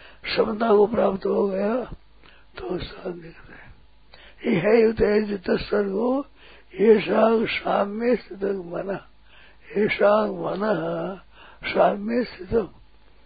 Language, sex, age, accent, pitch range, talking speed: Hindi, male, 60-79, native, 175-215 Hz, 105 wpm